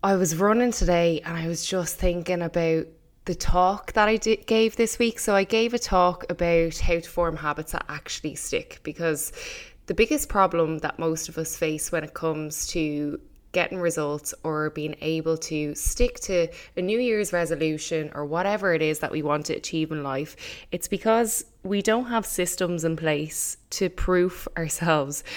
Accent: Irish